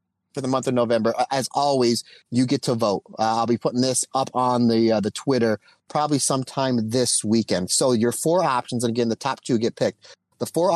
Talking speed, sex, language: 220 wpm, male, English